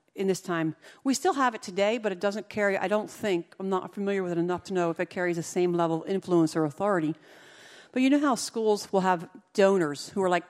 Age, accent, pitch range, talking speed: 50-69, American, 175-215 Hz, 250 wpm